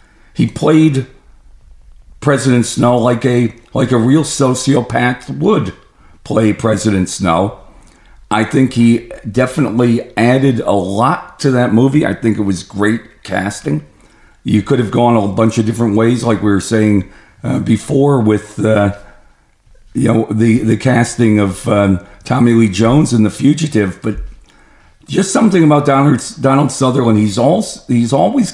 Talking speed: 150 wpm